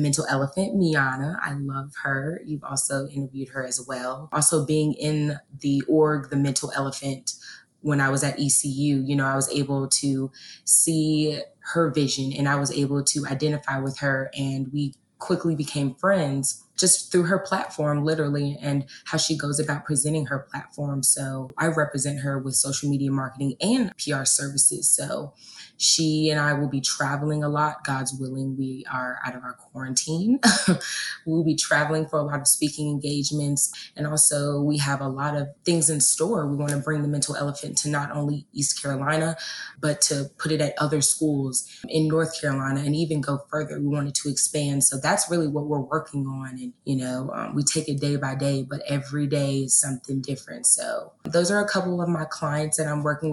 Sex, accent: female, American